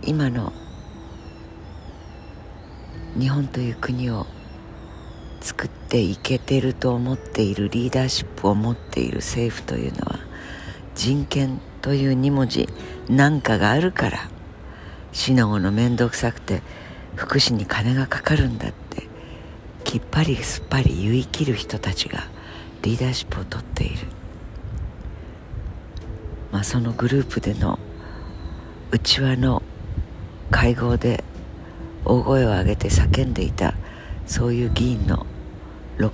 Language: Japanese